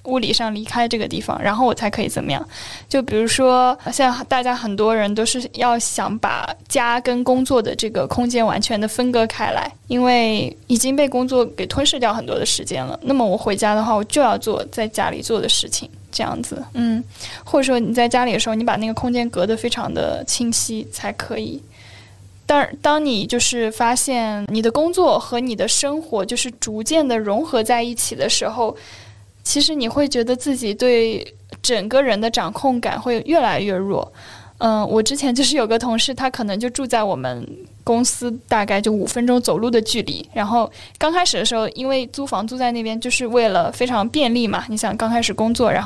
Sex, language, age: female, Chinese, 10-29